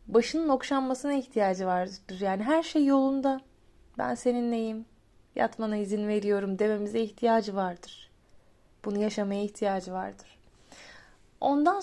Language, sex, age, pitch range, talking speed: Turkish, female, 20-39, 200-240 Hz, 105 wpm